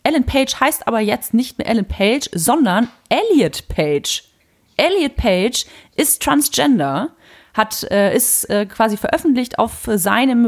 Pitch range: 175-235 Hz